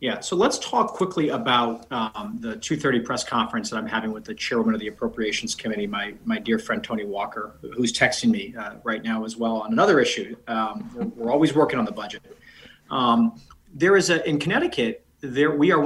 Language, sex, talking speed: English, male, 210 wpm